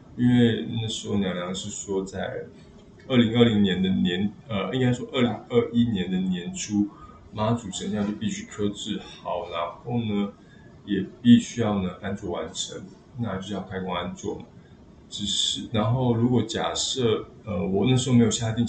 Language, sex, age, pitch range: Chinese, male, 20-39, 100-120 Hz